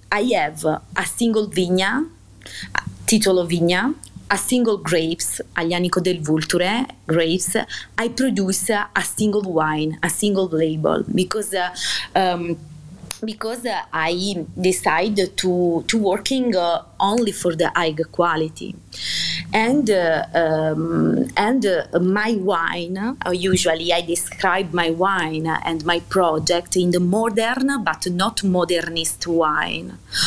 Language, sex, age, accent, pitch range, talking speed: English, female, 30-49, Italian, 170-215 Hz, 115 wpm